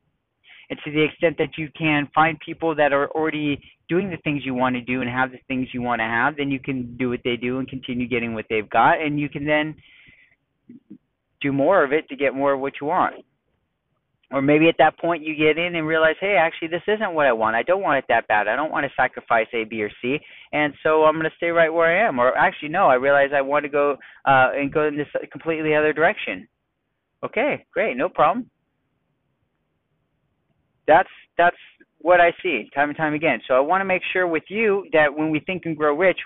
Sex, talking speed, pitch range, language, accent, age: male, 235 wpm, 130-160 Hz, English, American, 30-49